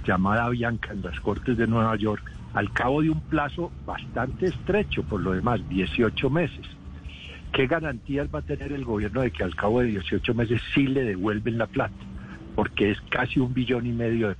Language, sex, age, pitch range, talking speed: Spanish, male, 60-79, 100-130 Hz, 195 wpm